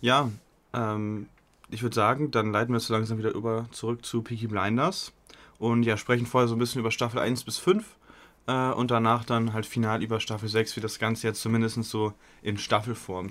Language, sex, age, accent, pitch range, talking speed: German, male, 20-39, German, 105-120 Hz, 205 wpm